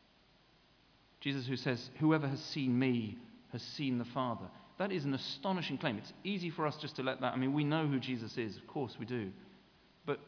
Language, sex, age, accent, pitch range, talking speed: English, male, 40-59, British, 125-160 Hz, 210 wpm